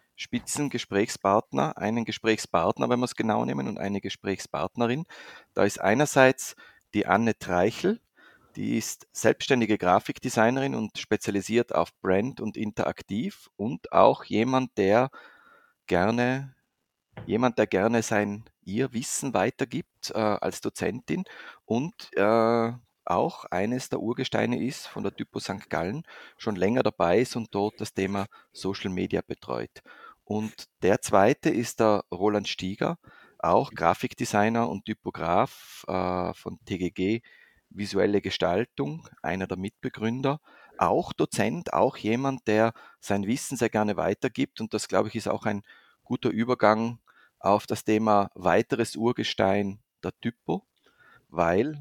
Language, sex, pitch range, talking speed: German, male, 100-120 Hz, 125 wpm